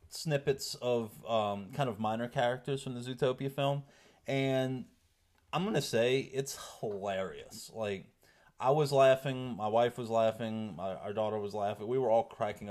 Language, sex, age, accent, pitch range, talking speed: English, male, 30-49, American, 100-120 Hz, 155 wpm